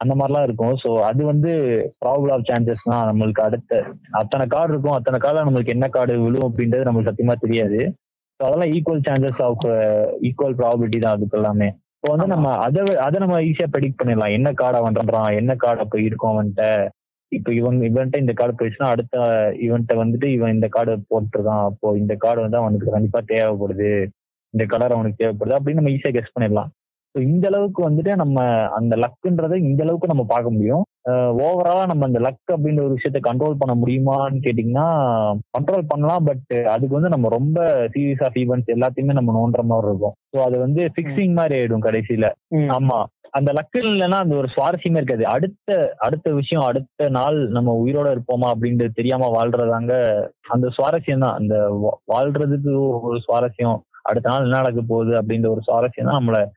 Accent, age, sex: native, 20-39, male